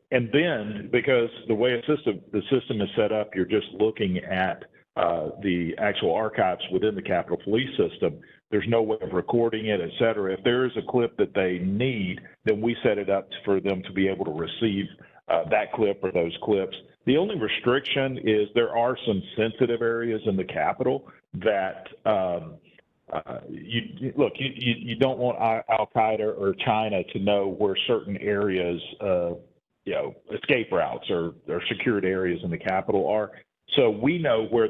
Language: English